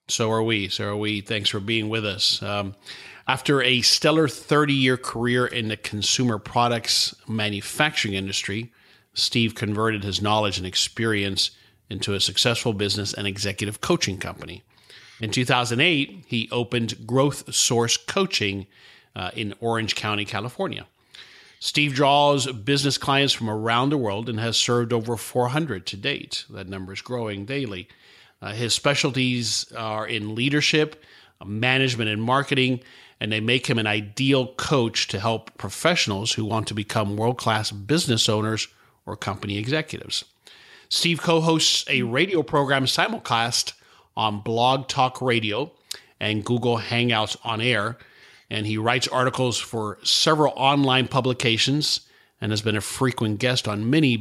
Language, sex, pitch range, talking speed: English, male, 105-130 Hz, 145 wpm